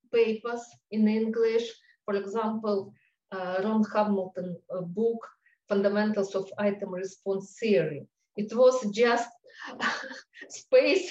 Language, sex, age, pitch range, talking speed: English, female, 50-69, 195-235 Hz, 95 wpm